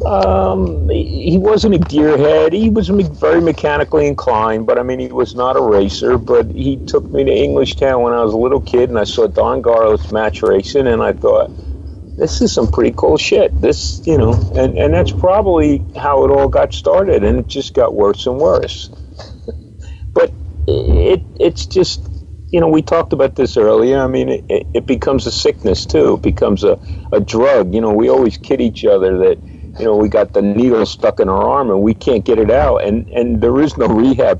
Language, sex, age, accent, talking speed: English, male, 50-69, American, 210 wpm